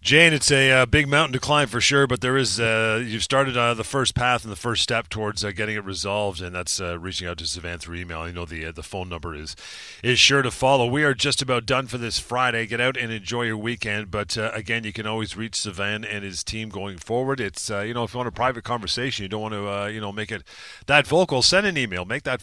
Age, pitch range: 40-59, 90-120 Hz